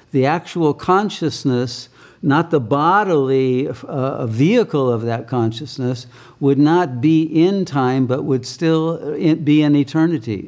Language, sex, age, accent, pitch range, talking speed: English, male, 60-79, American, 125-150 Hz, 125 wpm